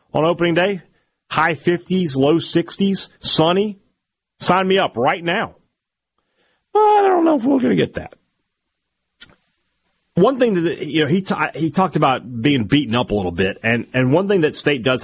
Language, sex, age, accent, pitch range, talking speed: English, male, 40-59, American, 95-135 Hz, 185 wpm